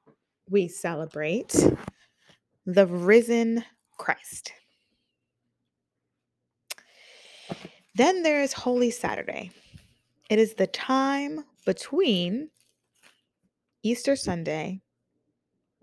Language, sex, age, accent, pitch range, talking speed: English, female, 20-39, American, 175-215 Hz, 60 wpm